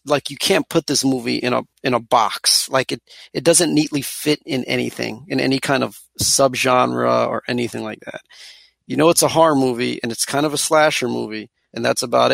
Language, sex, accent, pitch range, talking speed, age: English, male, American, 125-155 Hz, 215 wpm, 30-49